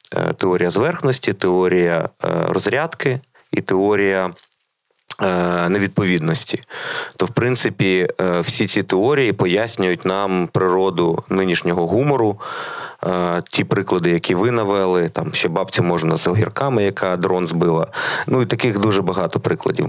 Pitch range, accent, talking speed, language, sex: 85-100 Hz, native, 115 wpm, Ukrainian, male